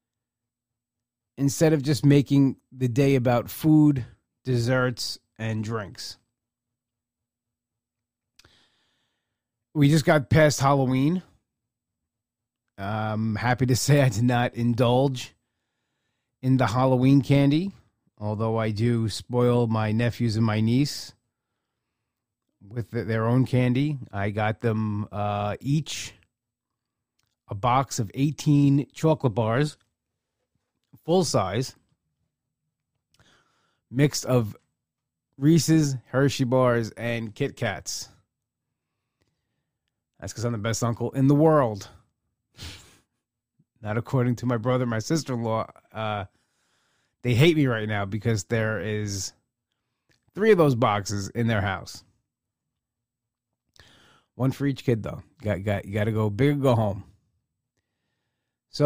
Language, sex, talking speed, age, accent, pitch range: English, male, 115 wpm, 30-49, American, 110-135 Hz